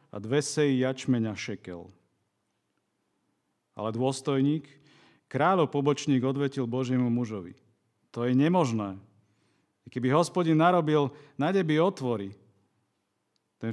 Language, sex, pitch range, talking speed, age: Slovak, male, 110-145 Hz, 95 wpm, 40-59